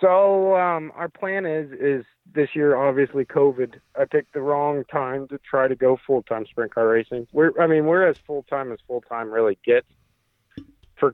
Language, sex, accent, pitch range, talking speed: English, male, American, 105-135 Hz, 185 wpm